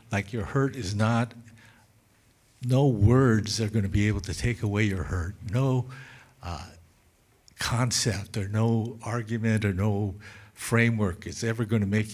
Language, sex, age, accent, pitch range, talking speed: English, male, 60-79, American, 95-115 Hz, 155 wpm